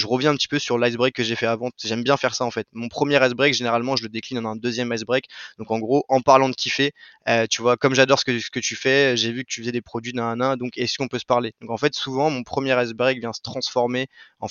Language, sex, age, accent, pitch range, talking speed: French, male, 20-39, French, 115-130 Hz, 295 wpm